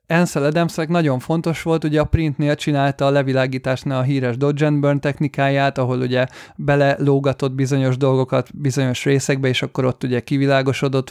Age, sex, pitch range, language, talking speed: 30-49, male, 135-165 Hz, Hungarian, 150 wpm